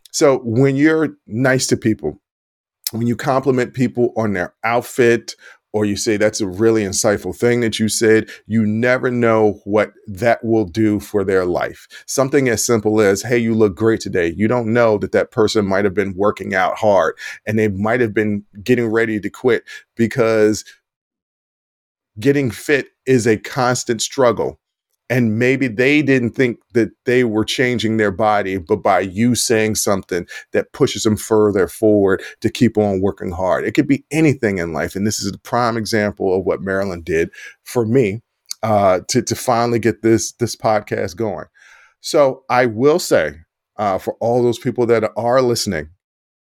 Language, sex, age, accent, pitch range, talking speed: English, male, 40-59, American, 105-125 Hz, 175 wpm